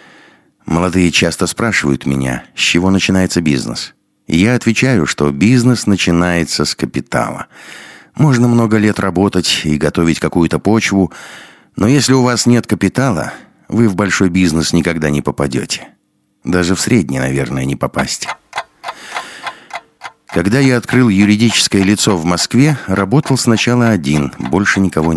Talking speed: 130 wpm